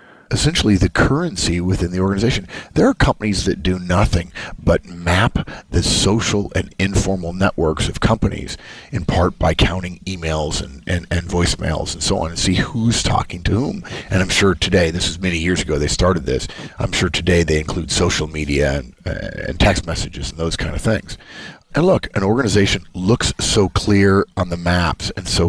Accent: American